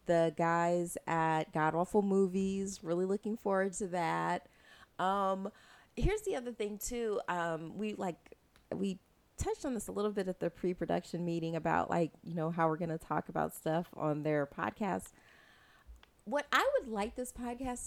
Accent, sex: American, female